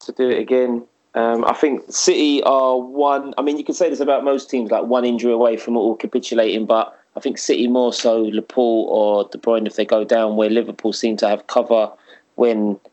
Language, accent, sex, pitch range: English, British, male, 110-130 Hz